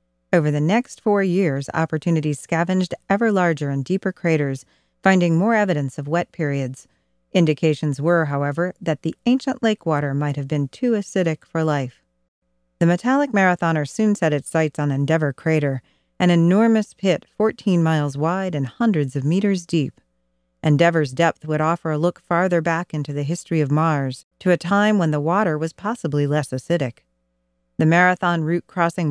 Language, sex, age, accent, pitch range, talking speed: English, female, 40-59, American, 145-185 Hz, 165 wpm